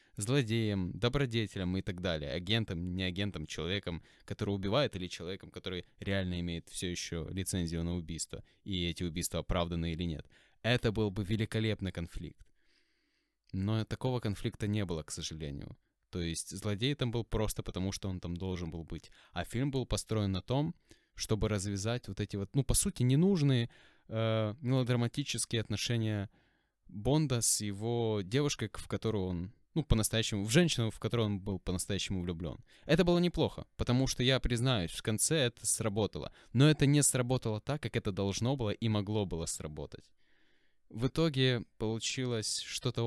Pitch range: 95-120 Hz